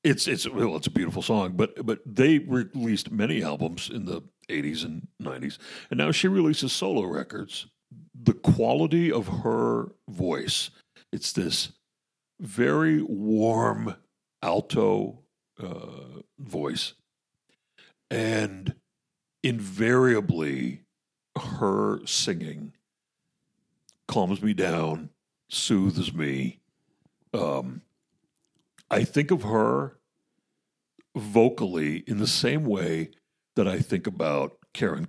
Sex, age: male, 60-79